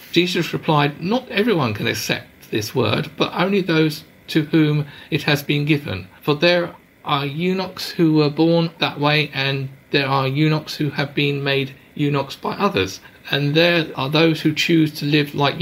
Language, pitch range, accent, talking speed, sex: English, 140-175 Hz, British, 175 wpm, male